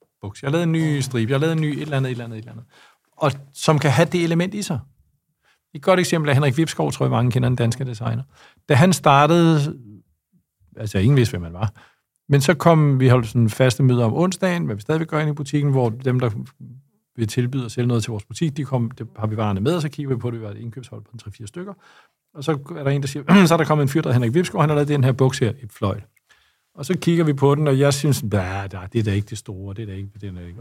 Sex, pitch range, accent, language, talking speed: male, 115-160 Hz, native, Danish, 290 wpm